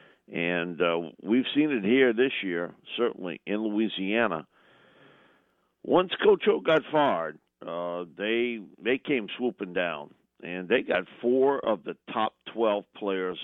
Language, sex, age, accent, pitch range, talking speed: English, male, 50-69, American, 90-115 Hz, 140 wpm